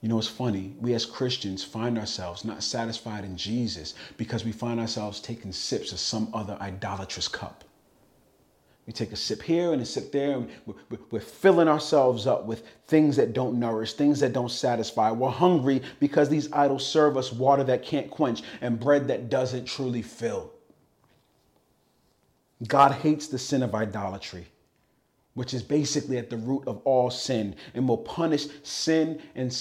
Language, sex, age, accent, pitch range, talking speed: English, male, 40-59, American, 110-145 Hz, 170 wpm